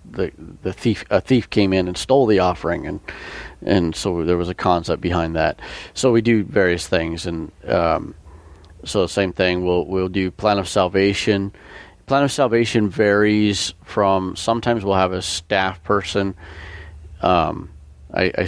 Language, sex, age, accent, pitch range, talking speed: English, male, 40-59, American, 85-100 Hz, 160 wpm